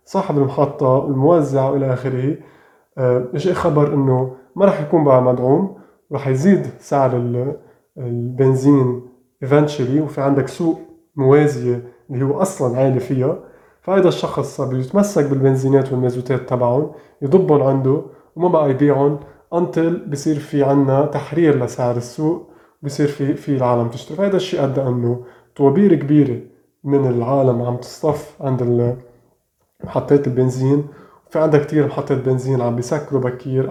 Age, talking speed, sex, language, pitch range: 20-39, 125 wpm, male, Arabic, 130-150 Hz